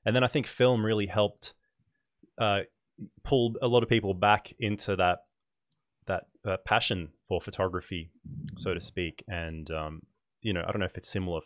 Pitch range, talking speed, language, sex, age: 90-105 Hz, 180 wpm, English, male, 20-39